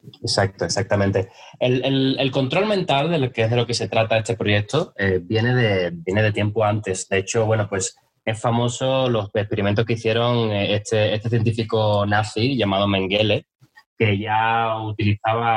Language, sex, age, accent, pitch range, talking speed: Spanish, male, 20-39, Spanish, 105-125 Hz, 170 wpm